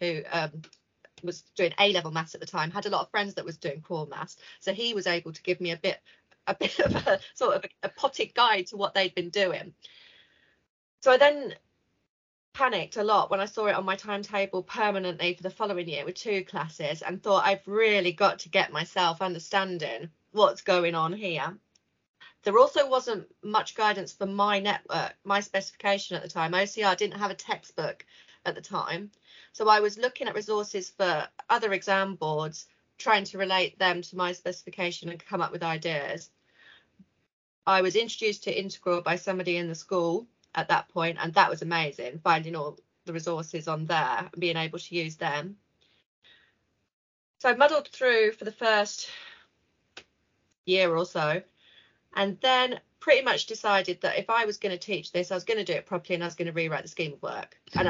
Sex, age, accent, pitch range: female, 30-49, British, 170-205 Hz